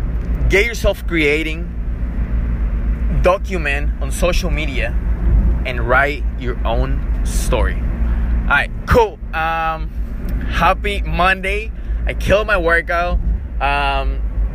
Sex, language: male, English